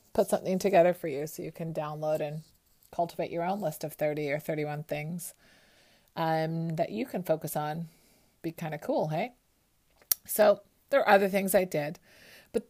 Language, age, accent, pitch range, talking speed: English, 30-49, American, 155-200 Hz, 180 wpm